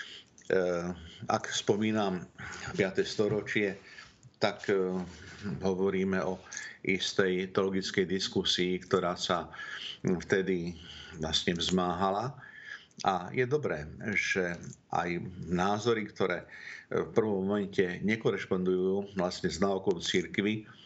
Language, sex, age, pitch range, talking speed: Slovak, male, 50-69, 90-105 Hz, 85 wpm